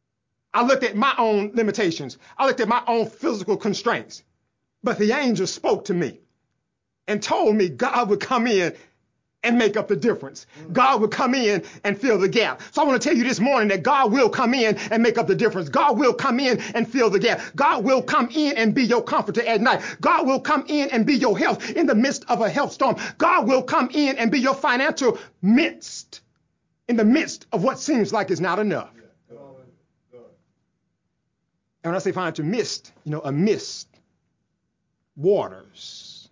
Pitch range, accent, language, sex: 195-260 Hz, American, English, male